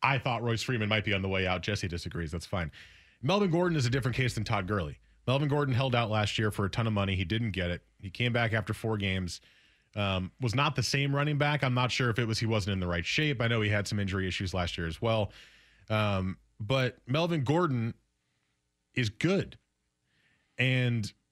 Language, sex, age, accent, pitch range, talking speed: English, male, 30-49, American, 95-130 Hz, 230 wpm